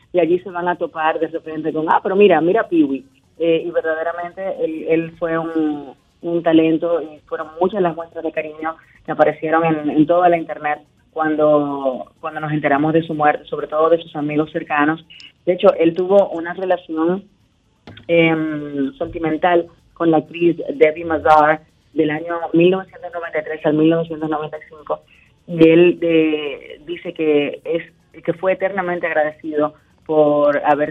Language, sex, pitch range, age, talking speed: Spanish, female, 150-170 Hz, 30-49, 155 wpm